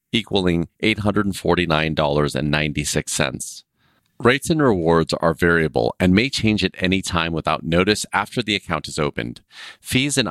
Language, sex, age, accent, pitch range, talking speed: English, male, 30-49, American, 80-105 Hz, 130 wpm